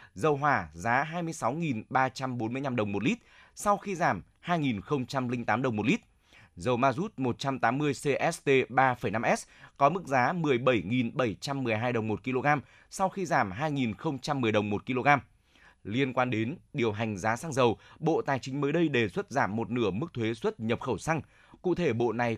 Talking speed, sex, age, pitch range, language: 165 wpm, male, 20-39, 115-155 Hz, Vietnamese